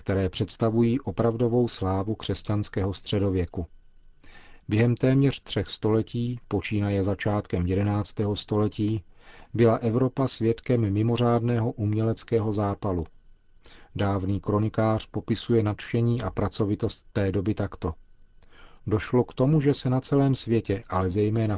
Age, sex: 40-59, male